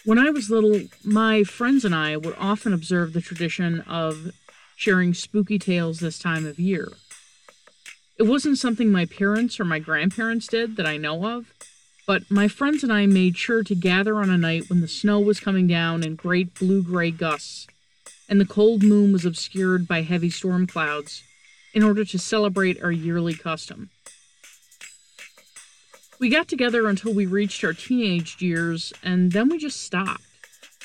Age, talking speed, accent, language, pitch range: 40-59, 170 wpm, American, English, 175-215 Hz